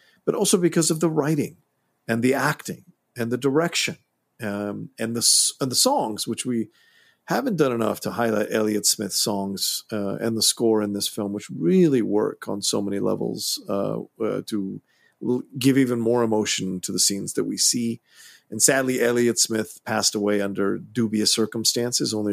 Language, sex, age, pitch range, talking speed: English, male, 40-59, 100-140 Hz, 175 wpm